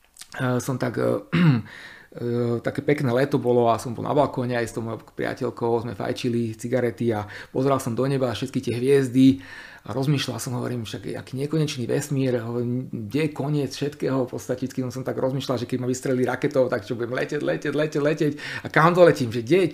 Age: 40-59